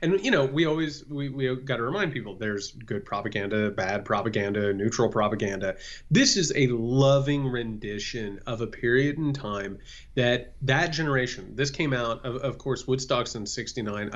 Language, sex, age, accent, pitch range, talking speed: English, male, 30-49, American, 105-140 Hz, 165 wpm